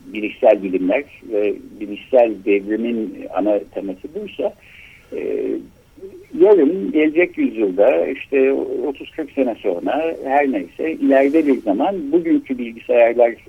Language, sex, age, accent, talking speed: Turkish, male, 60-79, native, 100 wpm